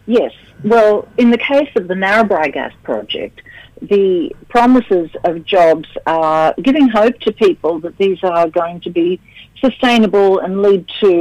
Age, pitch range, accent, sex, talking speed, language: 60-79, 185-235 Hz, Australian, female, 155 wpm, English